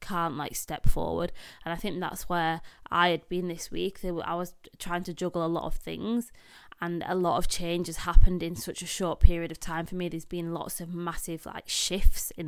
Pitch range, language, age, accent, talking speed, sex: 160-180 Hz, English, 20-39, British, 225 wpm, female